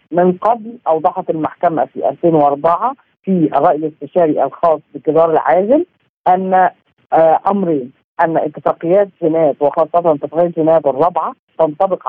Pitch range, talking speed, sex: 155-195 Hz, 110 wpm, female